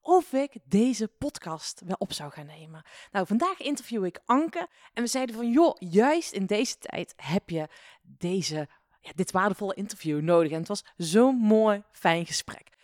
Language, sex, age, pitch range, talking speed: Dutch, female, 20-39, 175-245 Hz, 180 wpm